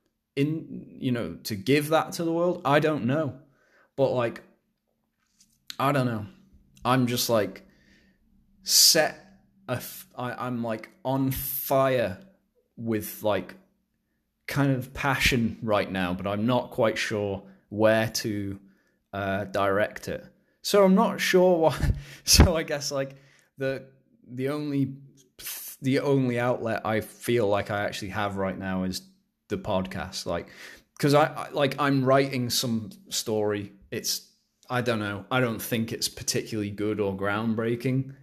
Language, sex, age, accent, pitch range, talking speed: English, male, 20-39, British, 100-135 Hz, 140 wpm